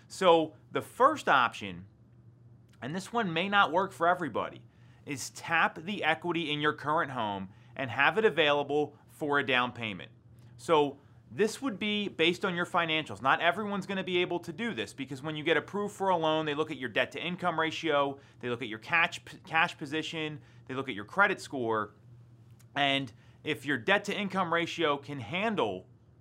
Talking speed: 190 wpm